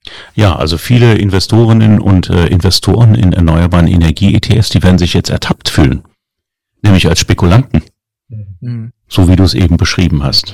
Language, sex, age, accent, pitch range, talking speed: German, male, 40-59, German, 85-105 Hz, 150 wpm